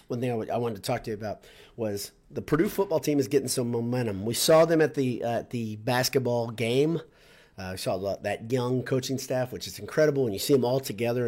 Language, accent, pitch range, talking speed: English, American, 110-140 Hz, 240 wpm